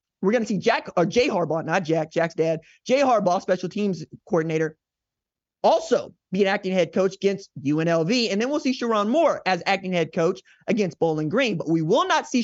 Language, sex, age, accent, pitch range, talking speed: English, male, 20-39, American, 175-240 Hz, 205 wpm